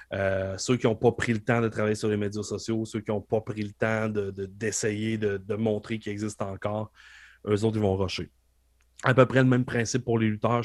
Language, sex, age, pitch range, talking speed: English, male, 30-49, 100-115 Hz, 235 wpm